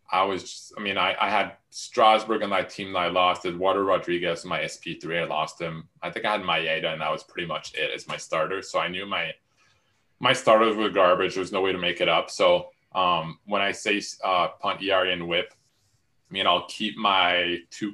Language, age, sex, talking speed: English, 20-39, male, 230 wpm